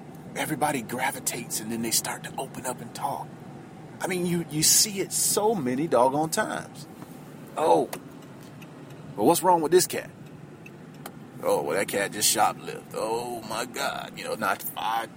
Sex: male